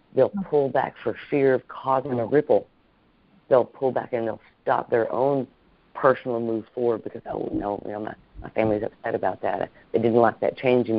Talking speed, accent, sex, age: 215 wpm, American, female, 40-59